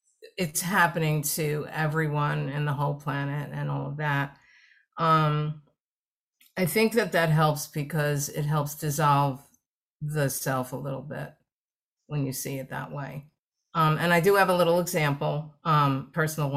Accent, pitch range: American, 145-175 Hz